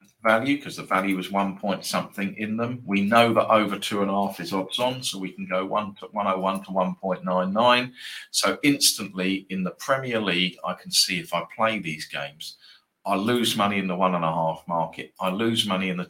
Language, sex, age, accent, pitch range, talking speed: English, male, 40-59, British, 90-110 Hz, 240 wpm